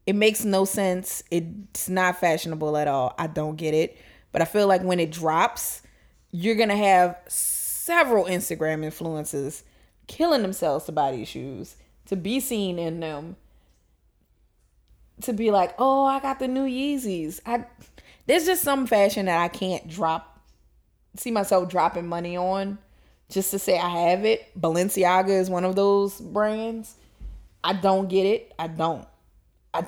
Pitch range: 170-220 Hz